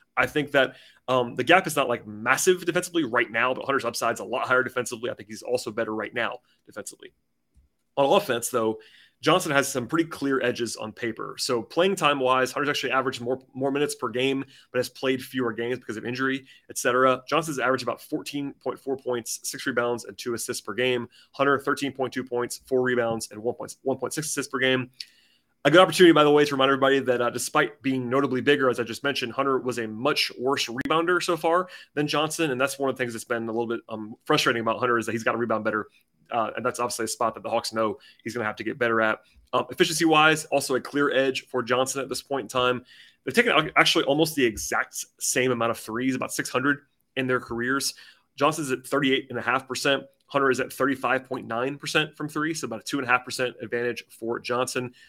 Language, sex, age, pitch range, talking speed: English, male, 30-49, 120-145 Hz, 225 wpm